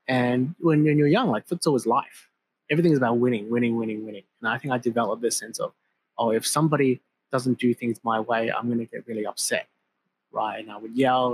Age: 30-49